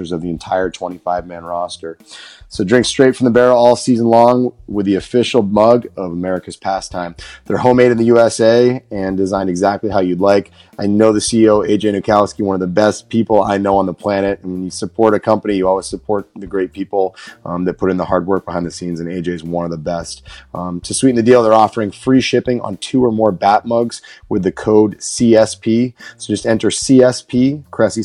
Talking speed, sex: 215 wpm, male